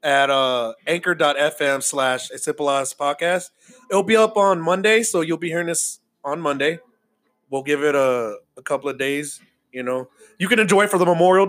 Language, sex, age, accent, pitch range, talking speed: English, male, 20-39, American, 145-195 Hz, 185 wpm